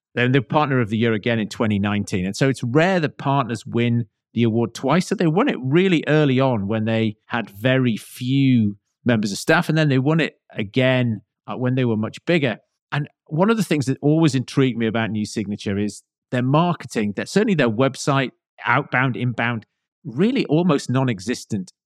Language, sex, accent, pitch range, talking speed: English, male, British, 110-145 Hz, 190 wpm